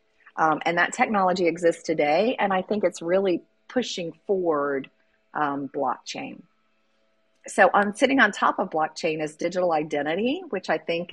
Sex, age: female, 40-59